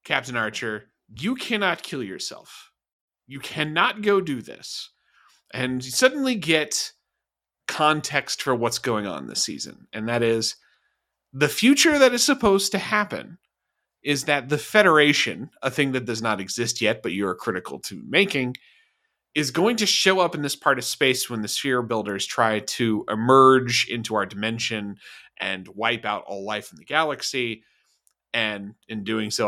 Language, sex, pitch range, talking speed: English, male, 110-170 Hz, 165 wpm